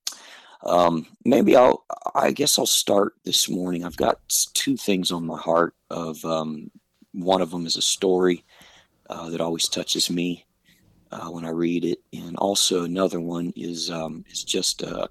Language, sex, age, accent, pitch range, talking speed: English, male, 50-69, American, 85-95 Hz, 170 wpm